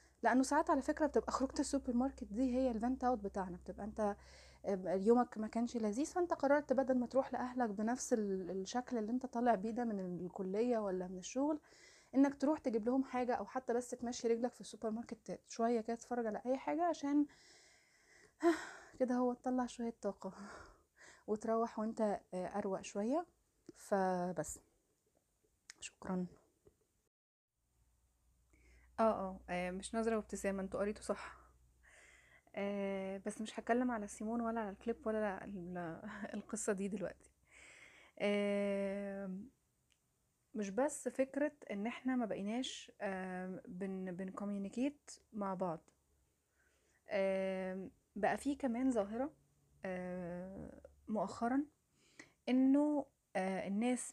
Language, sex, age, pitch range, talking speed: Arabic, female, 20-39, 195-250 Hz, 120 wpm